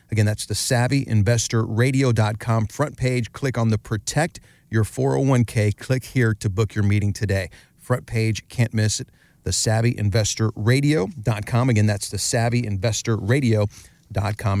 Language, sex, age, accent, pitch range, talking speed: English, male, 40-59, American, 110-135 Hz, 125 wpm